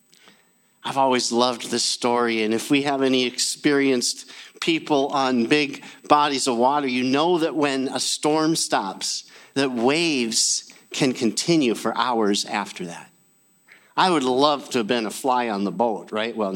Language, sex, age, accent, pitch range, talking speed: English, male, 50-69, American, 135-200 Hz, 165 wpm